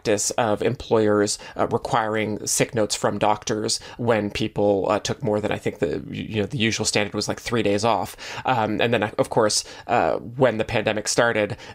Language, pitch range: English, 110-135 Hz